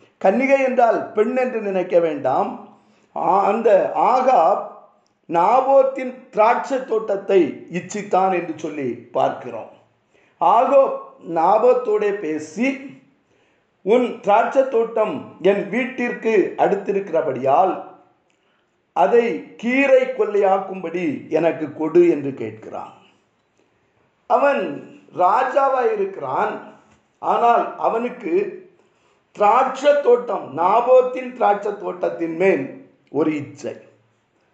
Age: 50-69